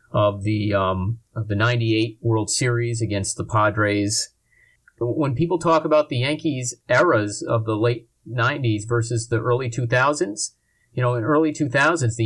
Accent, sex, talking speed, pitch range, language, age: American, male, 155 wpm, 115-140 Hz, English, 30-49